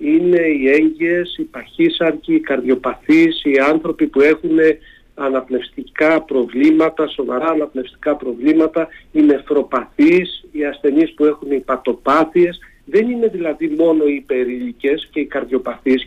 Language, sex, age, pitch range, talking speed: Greek, male, 50-69, 140-200 Hz, 120 wpm